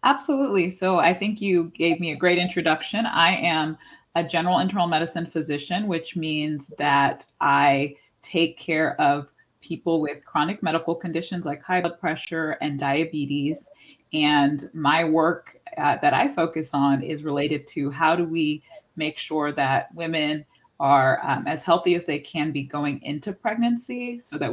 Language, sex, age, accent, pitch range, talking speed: English, female, 30-49, American, 150-170 Hz, 160 wpm